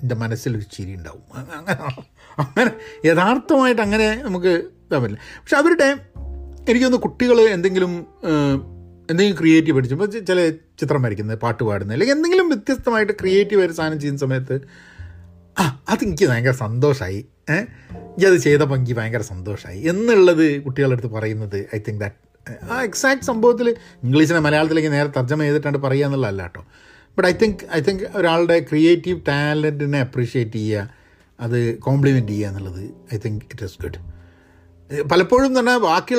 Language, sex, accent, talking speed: Malayalam, male, native, 120 wpm